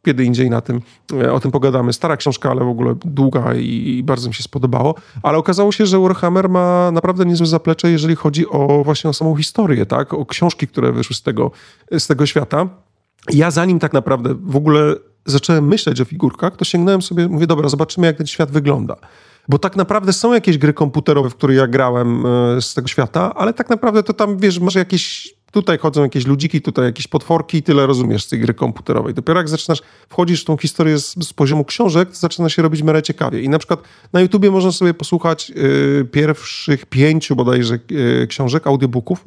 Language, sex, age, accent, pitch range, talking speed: Polish, male, 30-49, native, 135-170 Hz, 200 wpm